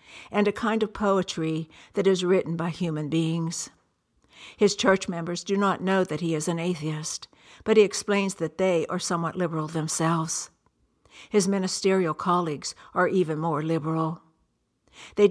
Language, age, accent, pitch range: English, 60-79, American, 160-185 Hz